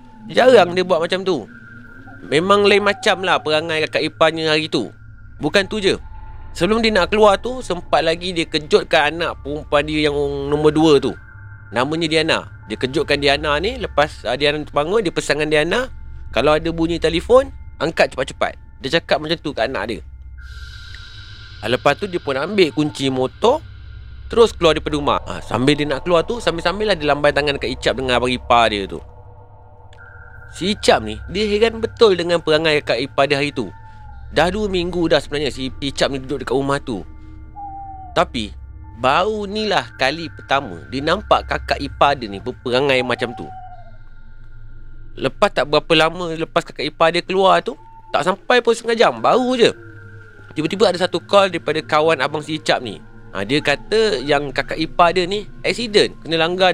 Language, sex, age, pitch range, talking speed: Malay, male, 30-49, 115-170 Hz, 170 wpm